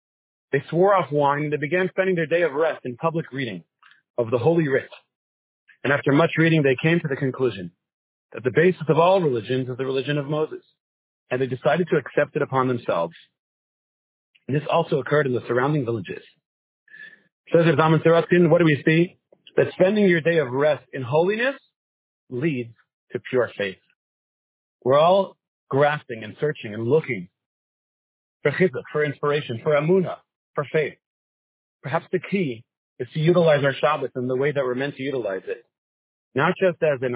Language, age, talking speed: English, 40-59, 175 wpm